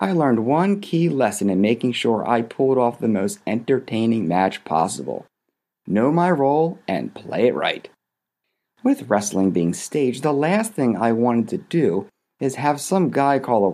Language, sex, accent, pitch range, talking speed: English, male, American, 110-150 Hz, 175 wpm